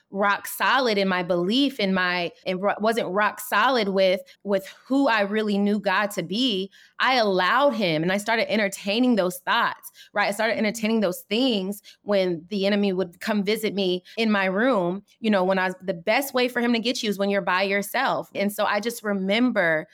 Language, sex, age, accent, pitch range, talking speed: English, female, 20-39, American, 195-230 Hz, 210 wpm